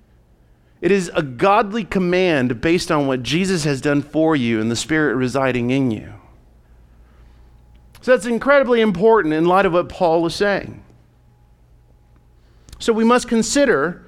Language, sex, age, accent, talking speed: English, male, 40-59, American, 145 wpm